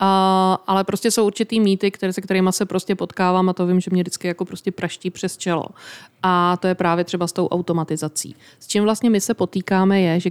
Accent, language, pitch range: native, Czech, 175-195 Hz